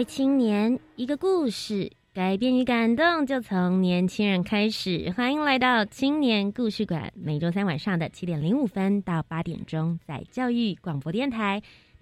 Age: 20-39